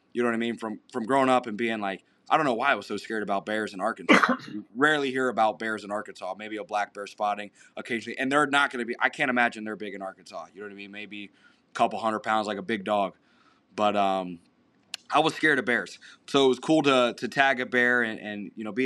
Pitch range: 100-115 Hz